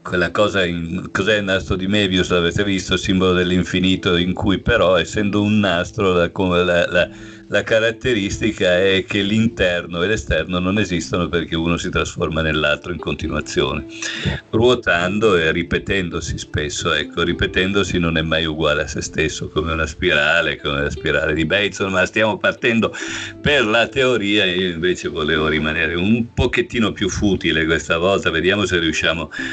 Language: Italian